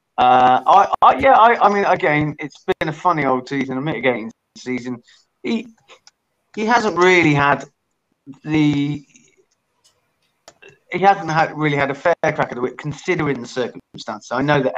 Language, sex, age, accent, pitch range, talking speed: English, male, 30-49, British, 125-160 Hz, 160 wpm